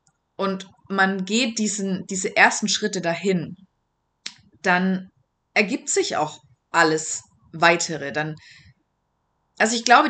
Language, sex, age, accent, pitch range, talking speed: German, female, 30-49, German, 180-225 Hz, 105 wpm